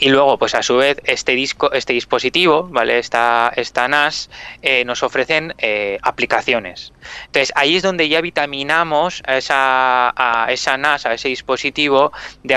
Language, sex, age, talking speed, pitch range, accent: Spanish, male, 20-39, 160 wpm, 115-140 Hz, Spanish